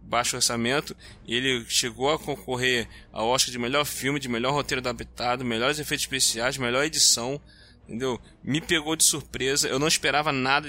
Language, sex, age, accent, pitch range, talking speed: Portuguese, male, 20-39, Brazilian, 120-160 Hz, 170 wpm